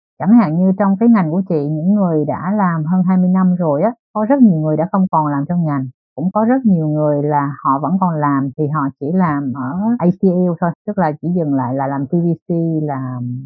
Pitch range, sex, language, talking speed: 140-195 Hz, female, Vietnamese, 235 wpm